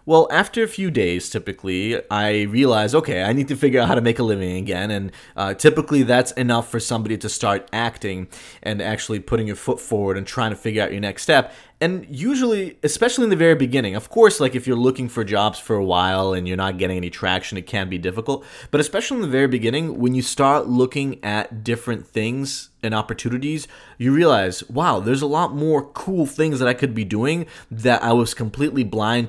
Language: English